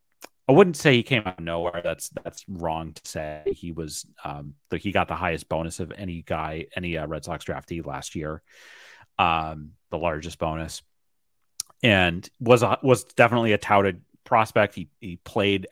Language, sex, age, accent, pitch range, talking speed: English, male, 30-49, American, 80-105 Hz, 180 wpm